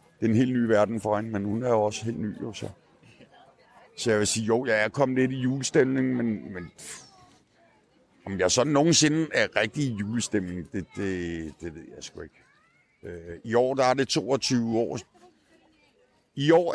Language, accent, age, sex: Danish, native, 50-69, male